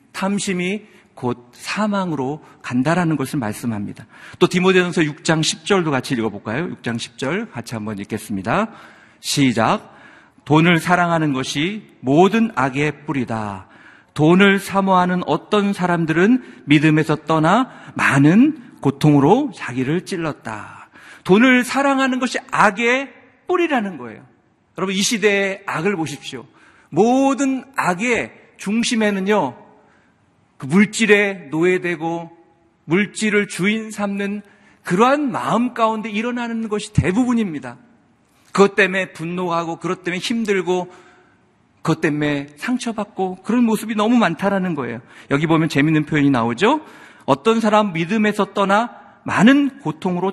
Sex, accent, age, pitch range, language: male, native, 50-69, 145-210 Hz, Korean